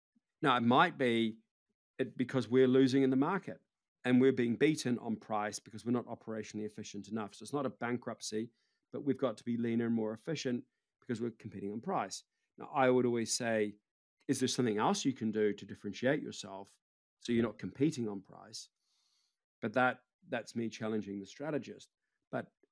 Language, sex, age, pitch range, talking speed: English, male, 40-59, 110-130 Hz, 190 wpm